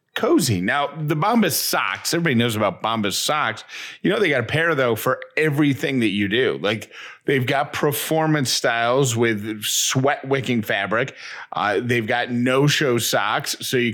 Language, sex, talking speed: English, male, 170 wpm